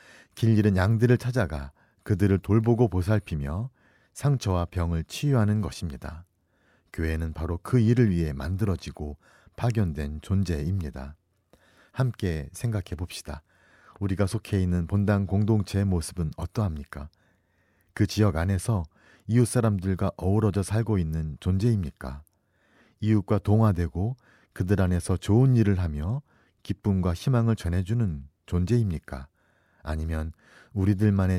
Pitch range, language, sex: 85-110 Hz, Korean, male